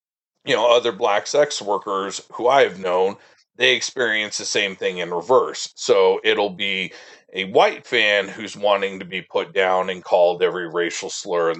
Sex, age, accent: male, 40-59, American